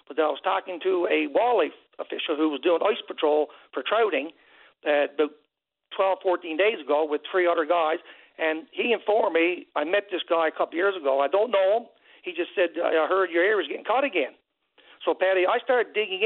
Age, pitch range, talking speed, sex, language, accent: 60-79, 165-215 Hz, 215 wpm, male, English, American